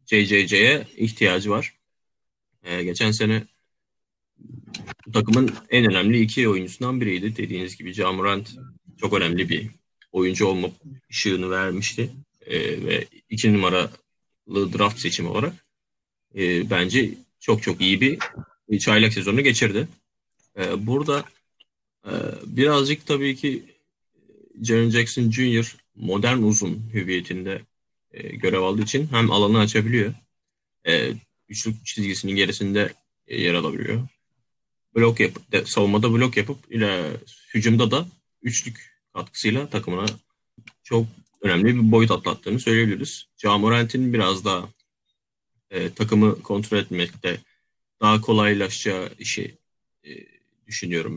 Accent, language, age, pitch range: native, Turkish, 30-49, 100-120 Hz